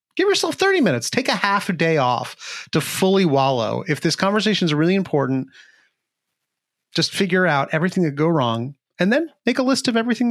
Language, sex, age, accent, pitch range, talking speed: English, male, 30-49, American, 125-195 Hz, 190 wpm